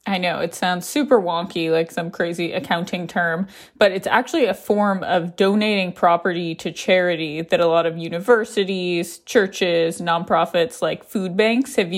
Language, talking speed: English, 160 wpm